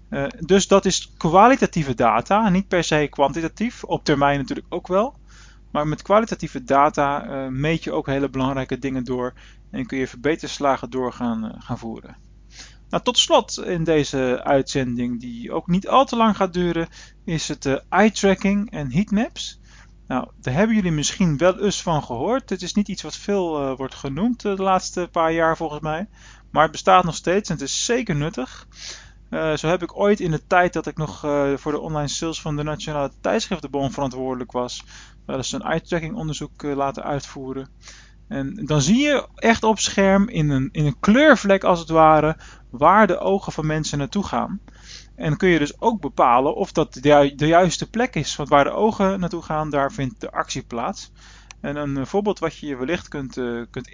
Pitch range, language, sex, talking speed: 140-190 Hz, Dutch, male, 195 wpm